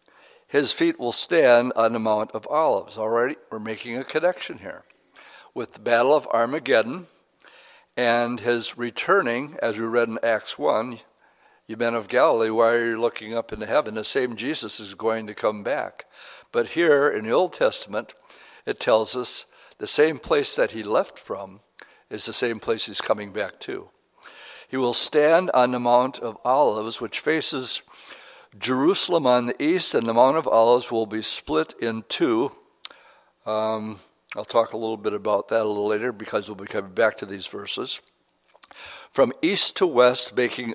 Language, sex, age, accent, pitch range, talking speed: English, male, 60-79, American, 110-130 Hz, 180 wpm